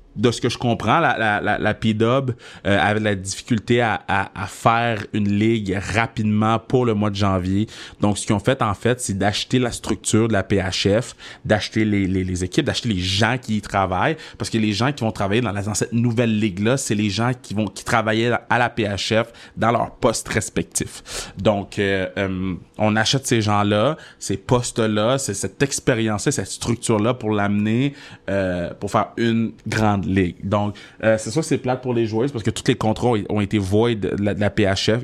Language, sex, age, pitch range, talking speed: French, male, 30-49, 100-115 Hz, 220 wpm